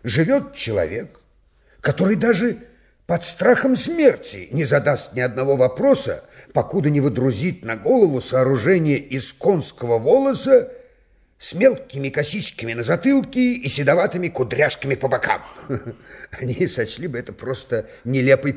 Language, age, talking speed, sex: Russian, 50-69, 120 wpm, male